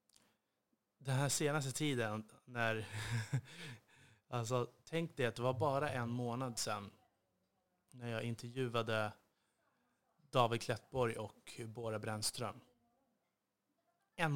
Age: 30-49